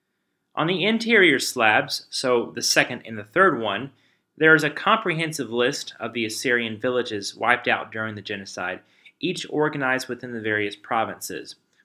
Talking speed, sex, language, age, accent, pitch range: 155 wpm, male, English, 30-49, American, 115-155 Hz